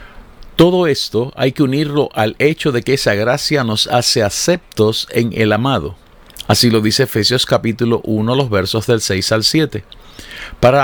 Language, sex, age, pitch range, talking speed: Spanish, male, 50-69, 110-135 Hz, 165 wpm